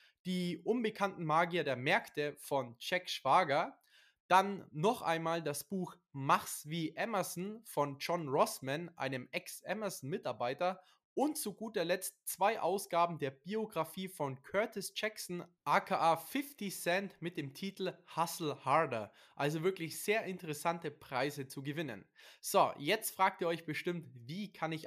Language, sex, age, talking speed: German, male, 20-39, 135 wpm